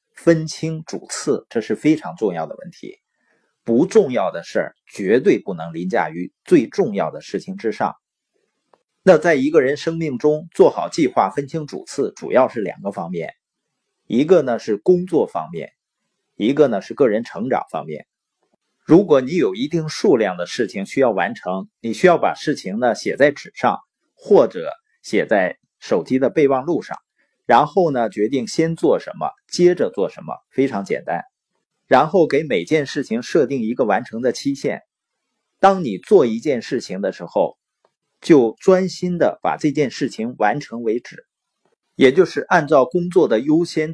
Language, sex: Chinese, male